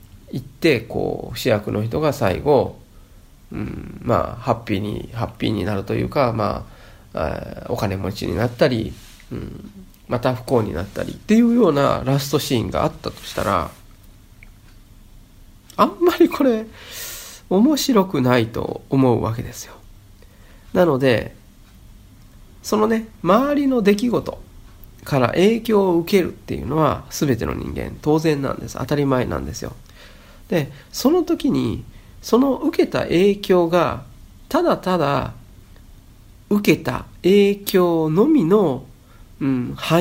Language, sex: Japanese, male